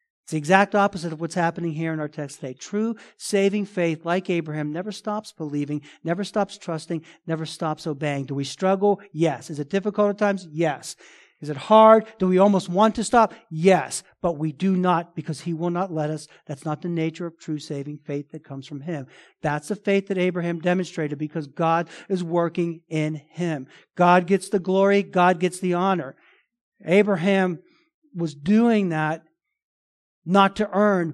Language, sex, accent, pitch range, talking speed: English, male, American, 150-195 Hz, 185 wpm